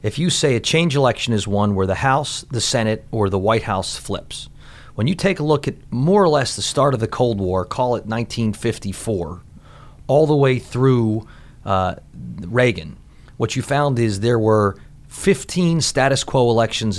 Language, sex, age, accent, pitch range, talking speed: English, male, 30-49, American, 105-135 Hz, 185 wpm